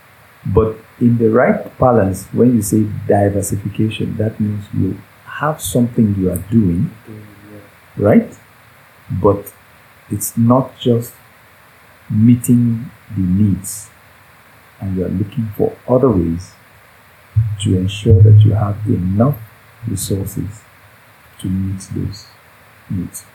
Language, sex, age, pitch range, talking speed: English, male, 50-69, 100-120 Hz, 110 wpm